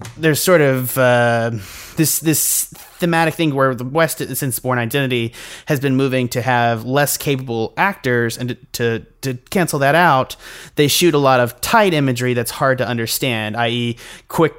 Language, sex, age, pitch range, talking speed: English, male, 30-49, 115-140 Hz, 175 wpm